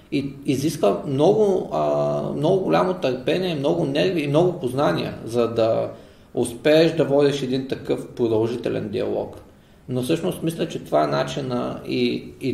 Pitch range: 110-140 Hz